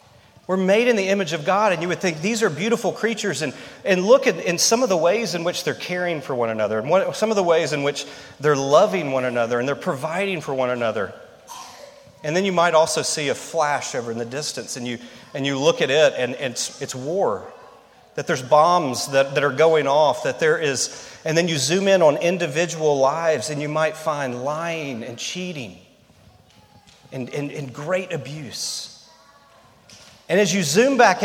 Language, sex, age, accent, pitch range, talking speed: English, male, 40-59, American, 150-210 Hz, 210 wpm